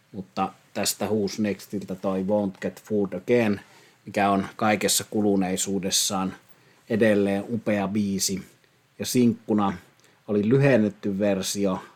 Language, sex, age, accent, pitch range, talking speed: Finnish, male, 30-49, native, 95-110 Hz, 105 wpm